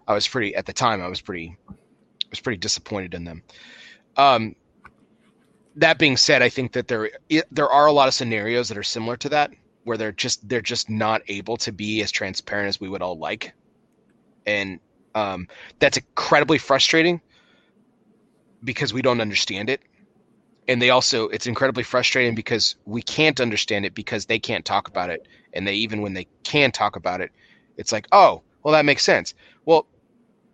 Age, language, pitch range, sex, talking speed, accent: 30-49, English, 105-130 Hz, male, 185 wpm, American